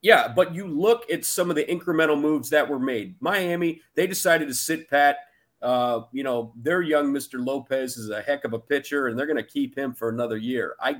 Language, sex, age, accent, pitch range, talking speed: English, male, 40-59, American, 120-160 Hz, 230 wpm